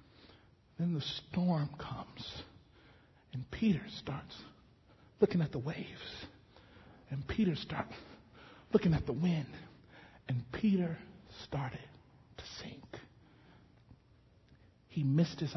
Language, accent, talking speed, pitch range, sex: English, American, 100 wpm, 140-200 Hz, male